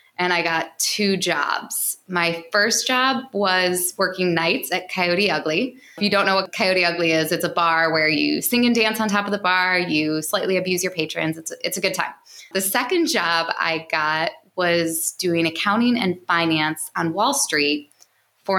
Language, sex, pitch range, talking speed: English, female, 165-215 Hz, 190 wpm